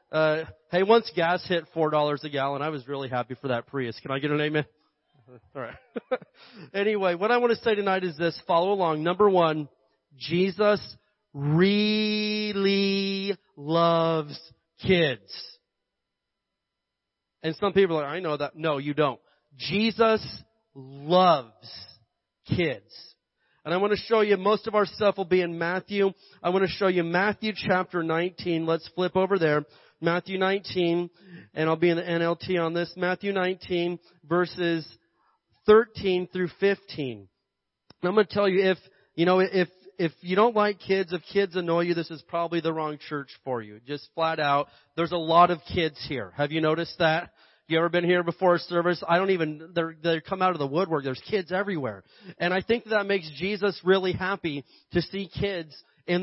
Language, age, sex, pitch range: English, 30-49, male, 155-190 Hz